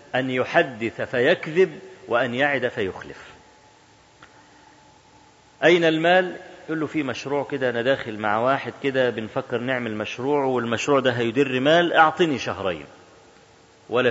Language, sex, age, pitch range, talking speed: Arabic, male, 40-59, 130-165 Hz, 115 wpm